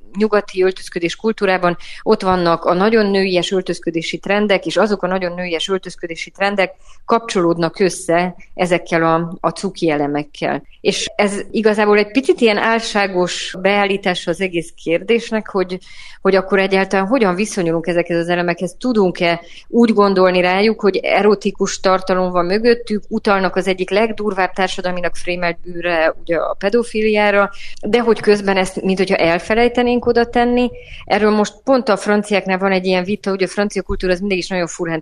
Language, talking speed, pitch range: Hungarian, 155 wpm, 170-205 Hz